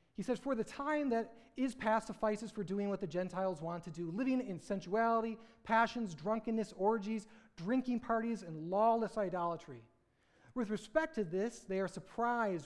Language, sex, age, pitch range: English, male, 30-49, 175-220 Hz